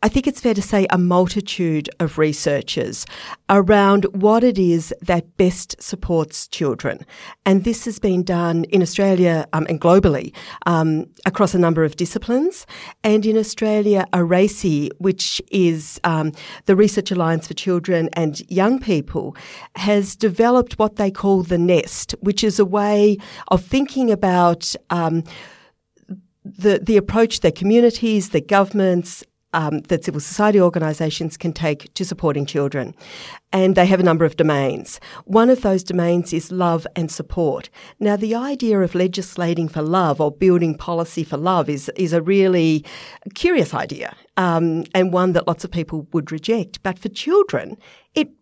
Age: 50-69